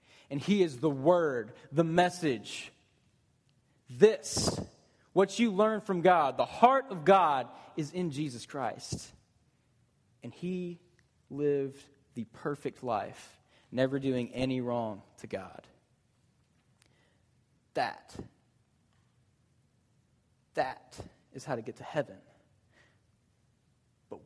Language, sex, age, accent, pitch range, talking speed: English, male, 20-39, American, 120-165 Hz, 105 wpm